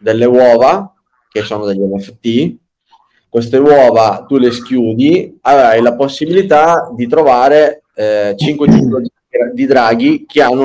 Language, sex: Italian, male